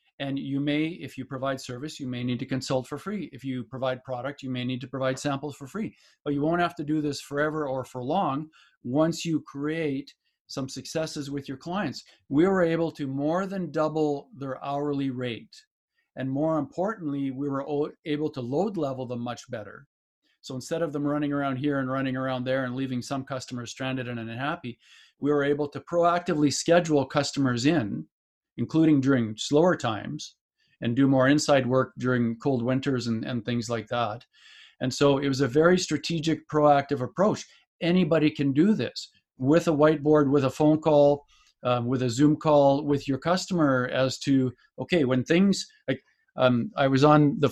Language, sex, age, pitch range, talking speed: English, male, 50-69, 130-155 Hz, 190 wpm